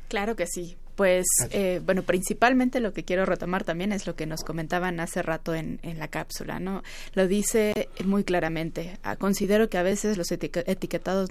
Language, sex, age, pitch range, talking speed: Spanish, female, 20-39, 180-215 Hz, 185 wpm